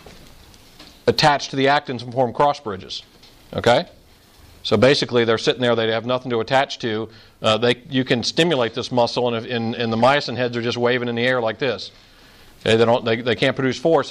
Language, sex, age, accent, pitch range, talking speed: English, male, 50-69, American, 115-140 Hz, 215 wpm